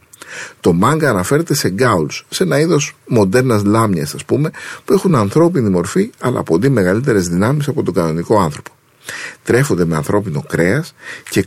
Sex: male